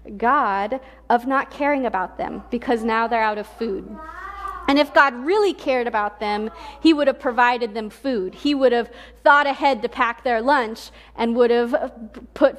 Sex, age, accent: female, 30-49, American